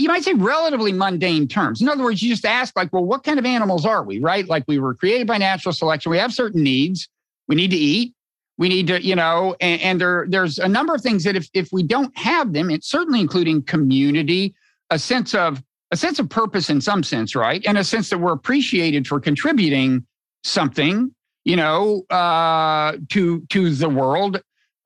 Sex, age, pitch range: male, 50-69, 160-215 Hz